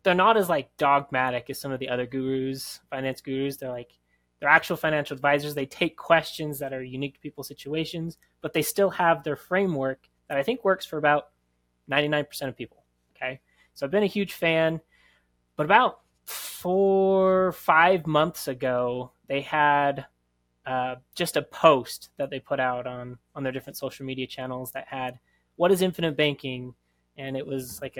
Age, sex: 20-39, male